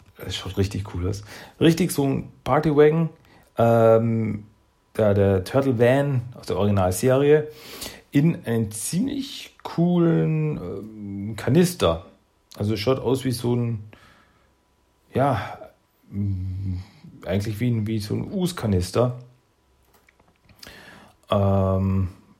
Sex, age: male, 40-59